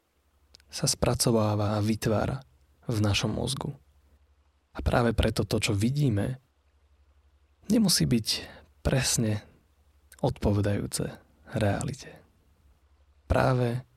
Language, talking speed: Slovak, 80 wpm